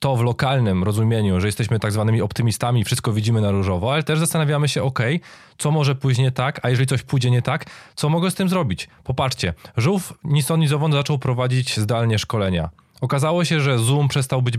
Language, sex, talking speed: Polish, male, 195 wpm